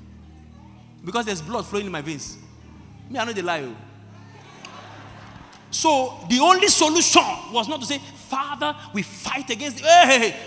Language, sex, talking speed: English, male, 160 wpm